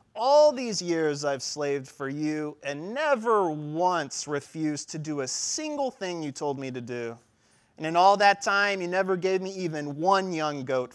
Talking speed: 185 wpm